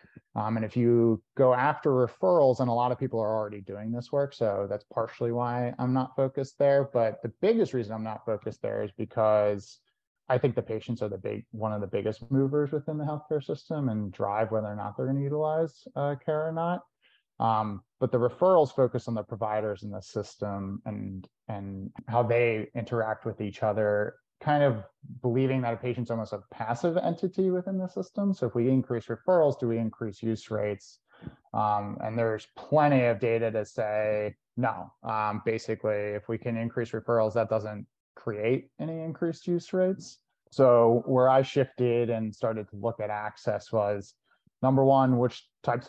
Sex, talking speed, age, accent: male, 190 wpm, 30-49, American